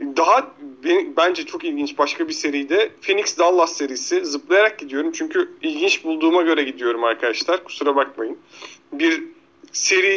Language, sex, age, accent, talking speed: Turkish, male, 40-59, native, 135 wpm